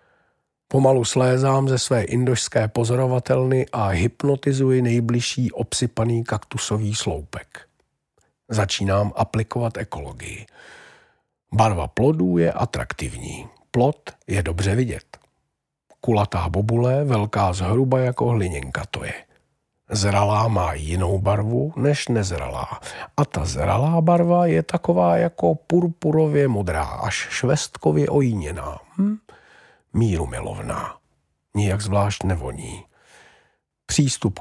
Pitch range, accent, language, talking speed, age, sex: 100-130 Hz, native, Czech, 100 wpm, 50-69, male